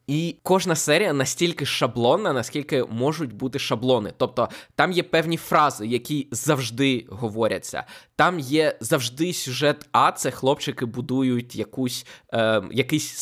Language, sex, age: Ukrainian, male, 20-39